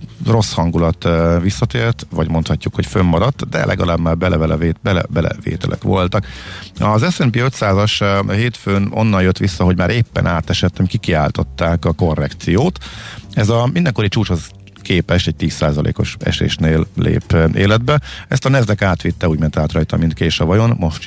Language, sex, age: Hungarian, male, 50-69